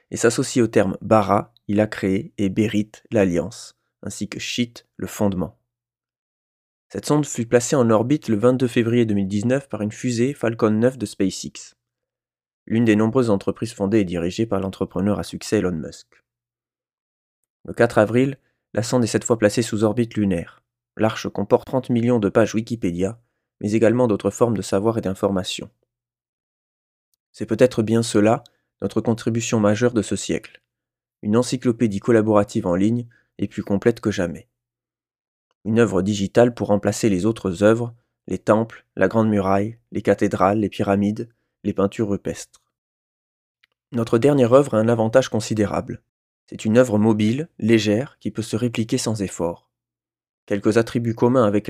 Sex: male